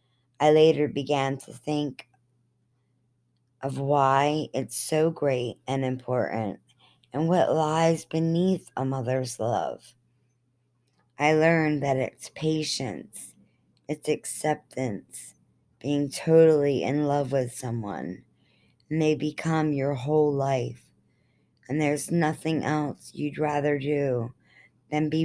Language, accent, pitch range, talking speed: English, American, 130-155 Hz, 110 wpm